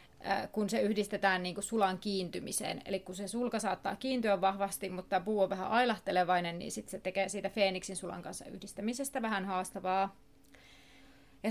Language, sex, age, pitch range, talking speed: Finnish, female, 30-49, 195-235 Hz, 160 wpm